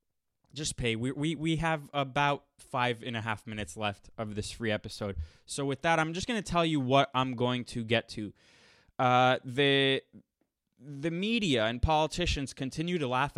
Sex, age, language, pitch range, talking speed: male, 20-39, English, 115-140 Hz, 180 wpm